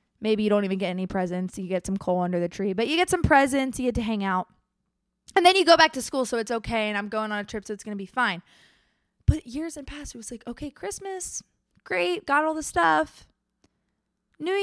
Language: English